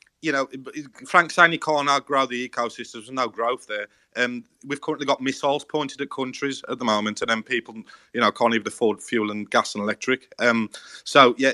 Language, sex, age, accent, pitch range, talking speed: English, male, 30-49, British, 115-140 Hz, 220 wpm